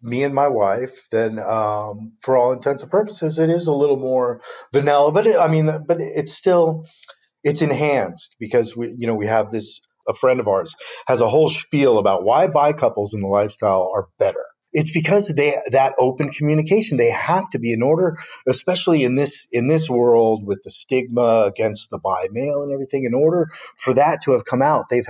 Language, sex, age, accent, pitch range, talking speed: English, male, 40-59, American, 110-150 Hz, 205 wpm